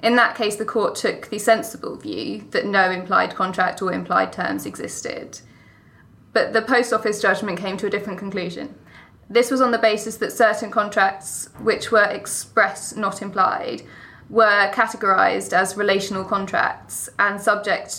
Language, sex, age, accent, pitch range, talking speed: English, female, 20-39, British, 195-235 Hz, 155 wpm